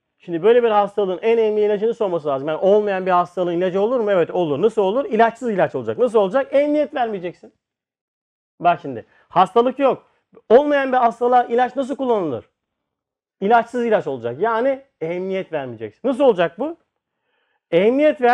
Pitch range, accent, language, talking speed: 190-255 Hz, native, Turkish, 155 wpm